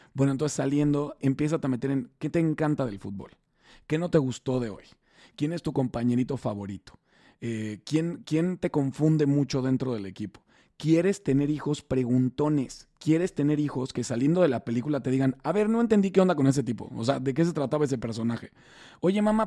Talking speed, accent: 200 wpm, Mexican